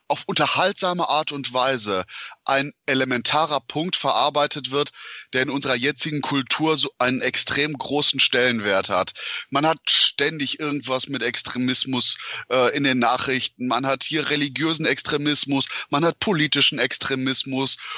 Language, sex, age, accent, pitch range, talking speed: German, male, 30-49, German, 125-150 Hz, 135 wpm